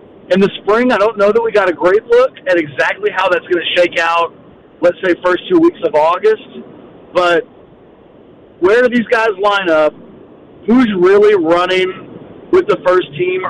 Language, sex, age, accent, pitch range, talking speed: English, male, 50-69, American, 175-235 Hz, 180 wpm